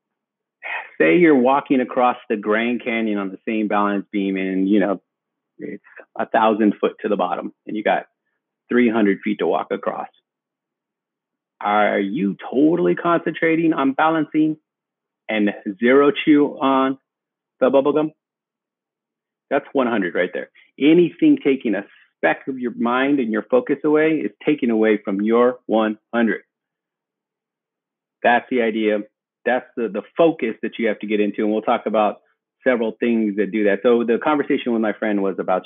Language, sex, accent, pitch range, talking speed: English, male, American, 105-130 Hz, 155 wpm